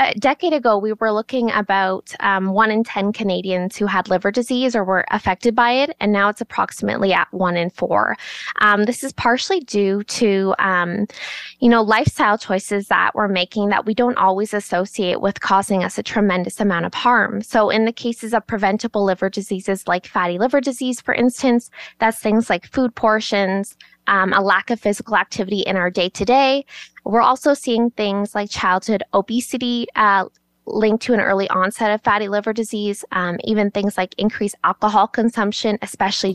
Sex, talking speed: female, 180 wpm